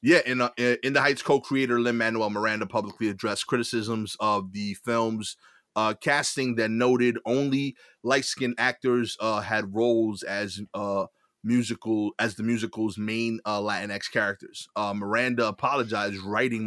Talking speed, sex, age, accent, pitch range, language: 135 wpm, male, 30-49, American, 105-120 Hz, English